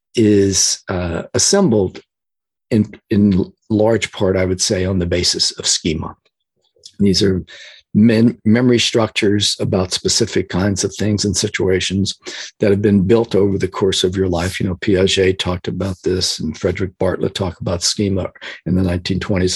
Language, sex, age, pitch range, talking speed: English, male, 50-69, 95-110 Hz, 165 wpm